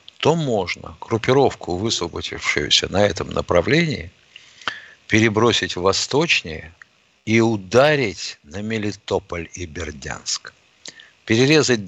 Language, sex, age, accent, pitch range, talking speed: Russian, male, 60-79, native, 100-145 Hz, 85 wpm